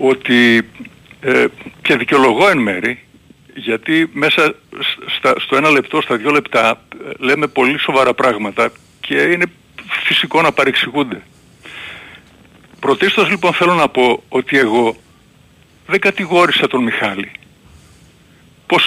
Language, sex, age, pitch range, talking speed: Greek, male, 50-69, 175-235 Hz, 110 wpm